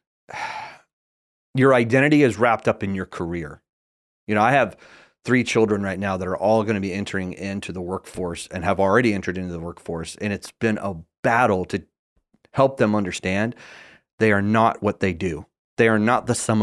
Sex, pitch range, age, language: male, 95-120 Hz, 30-49, English